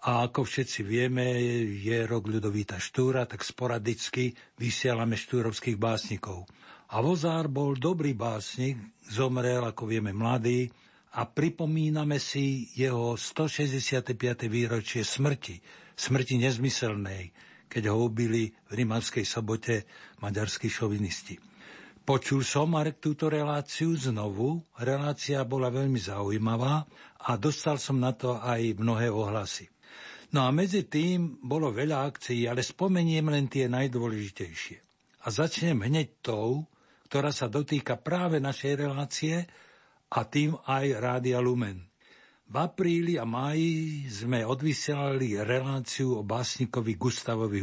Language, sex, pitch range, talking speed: Slovak, male, 115-145 Hz, 120 wpm